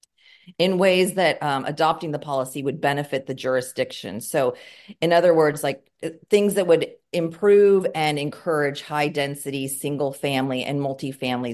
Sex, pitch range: female, 130-155 Hz